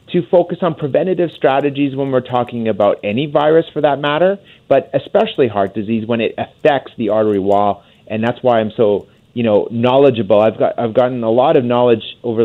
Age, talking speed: 30-49, 200 wpm